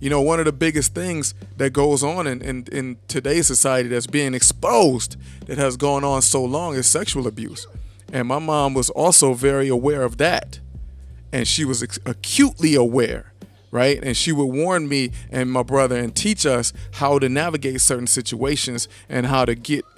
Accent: American